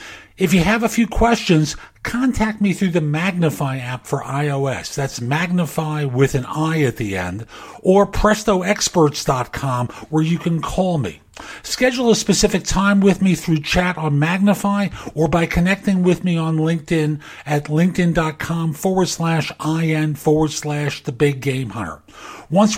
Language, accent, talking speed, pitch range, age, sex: English, American, 155 wpm, 145-185 Hz, 50-69, male